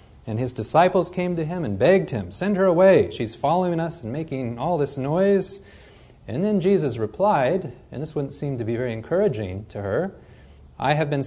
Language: English